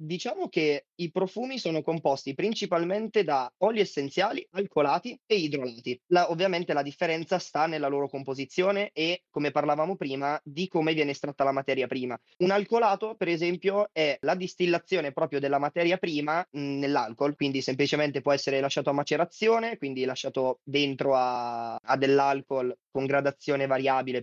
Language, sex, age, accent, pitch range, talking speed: Italian, male, 20-39, native, 140-170 Hz, 145 wpm